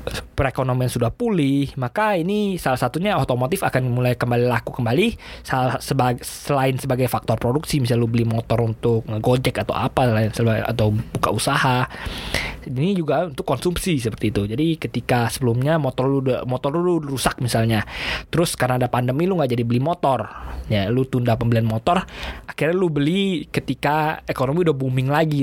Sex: male